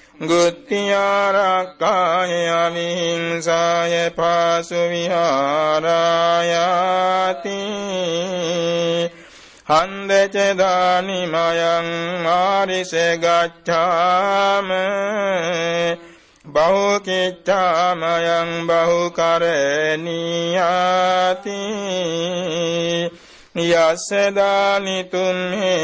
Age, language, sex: 60-79, Vietnamese, male